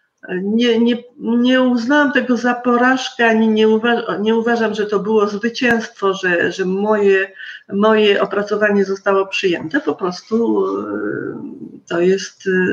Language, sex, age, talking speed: Polish, female, 50-69, 125 wpm